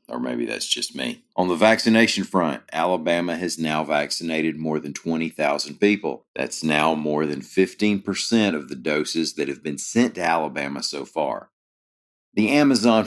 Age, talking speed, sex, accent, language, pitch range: 40-59, 160 wpm, male, American, English, 75-95 Hz